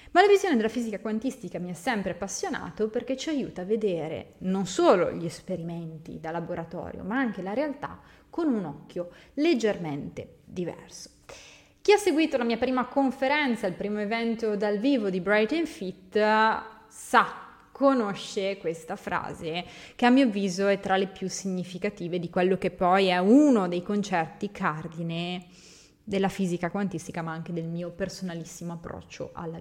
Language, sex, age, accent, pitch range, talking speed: Italian, female, 20-39, native, 175-240 Hz, 160 wpm